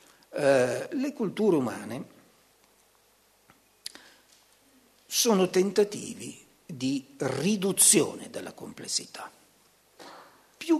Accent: native